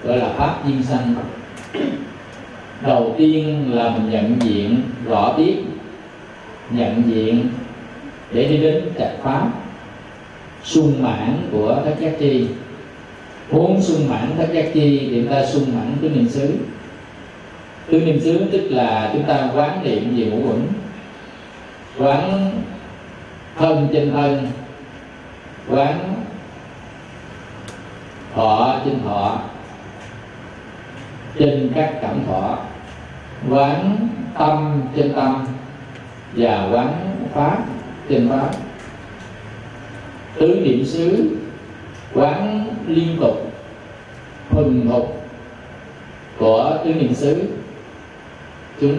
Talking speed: 105 wpm